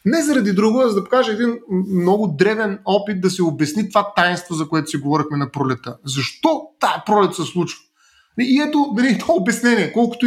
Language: Bulgarian